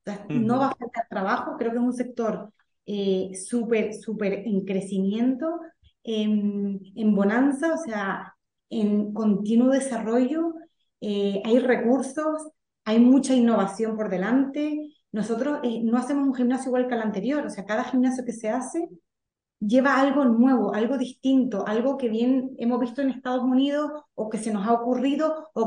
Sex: female